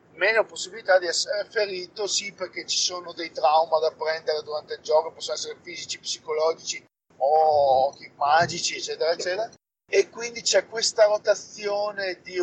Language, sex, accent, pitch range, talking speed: Italian, male, native, 170-205 Hz, 150 wpm